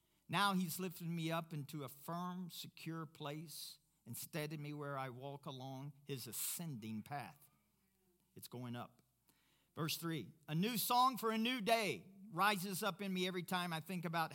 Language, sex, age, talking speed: English, male, 50-69, 170 wpm